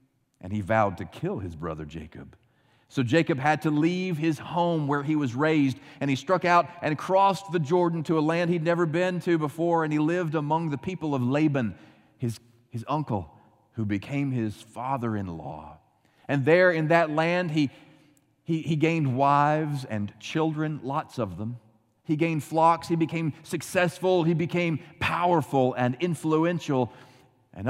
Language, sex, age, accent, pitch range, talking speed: English, male, 40-59, American, 110-155 Hz, 165 wpm